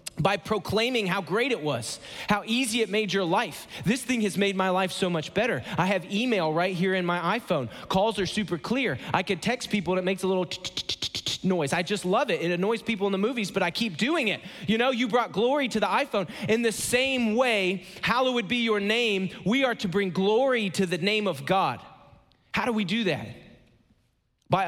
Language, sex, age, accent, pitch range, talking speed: English, male, 30-49, American, 160-210 Hz, 220 wpm